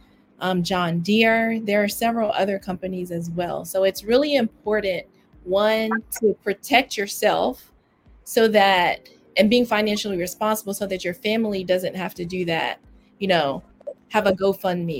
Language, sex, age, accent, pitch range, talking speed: English, female, 20-39, American, 185-215 Hz, 150 wpm